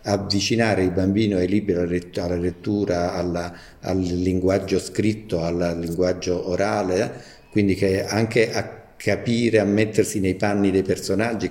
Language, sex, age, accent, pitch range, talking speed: Italian, male, 50-69, native, 90-105 Hz, 140 wpm